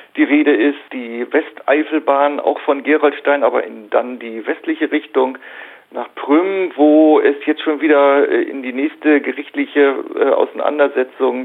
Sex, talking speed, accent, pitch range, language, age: male, 140 wpm, German, 130-150 Hz, German, 40-59